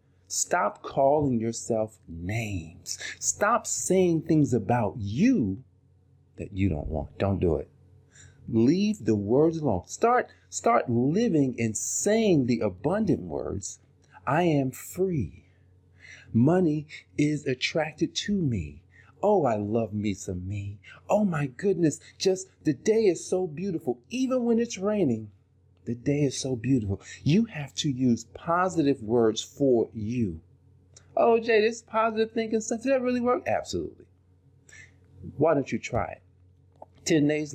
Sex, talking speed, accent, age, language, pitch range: male, 135 wpm, American, 40-59, English, 100-155 Hz